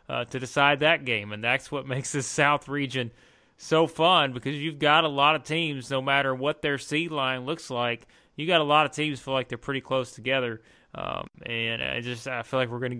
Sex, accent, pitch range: male, American, 120-140 Hz